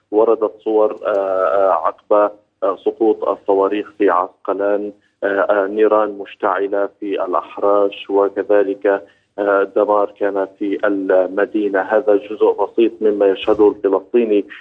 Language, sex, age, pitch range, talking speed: Arabic, male, 30-49, 100-110 Hz, 90 wpm